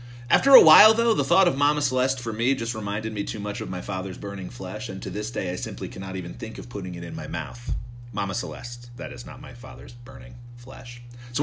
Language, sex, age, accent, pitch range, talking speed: English, male, 40-59, American, 105-130 Hz, 240 wpm